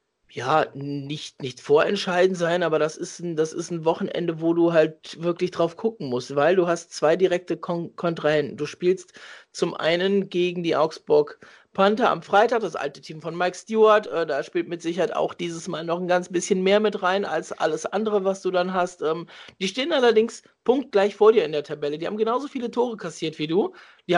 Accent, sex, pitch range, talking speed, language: German, male, 165-215 Hz, 200 wpm, German